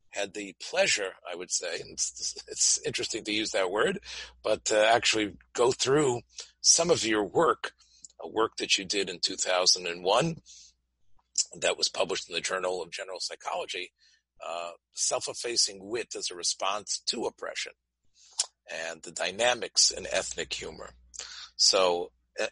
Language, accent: English, American